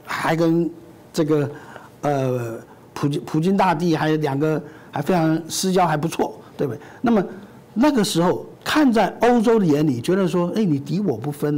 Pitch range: 140-205 Hz